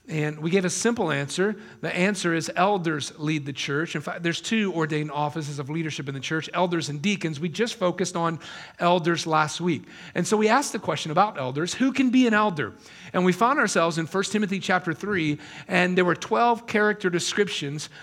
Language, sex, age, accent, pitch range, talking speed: English, male, 40-59, American, 160-195 Hz, 205 wpm